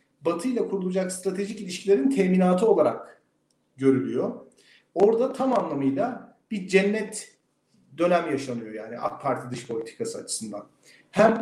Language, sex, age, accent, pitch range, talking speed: Turkish, male, 40-59, native, 140-200 Hz, 115 wpm